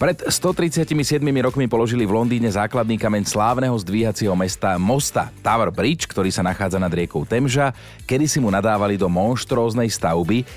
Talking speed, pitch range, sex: 155 wpm, 95-125 Hz, male